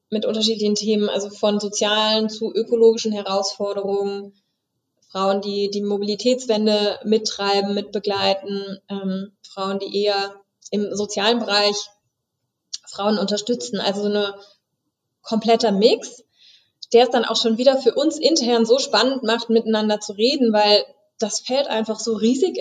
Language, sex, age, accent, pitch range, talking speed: German, female, 20-39, German, 200-230 Hz, 135 wpm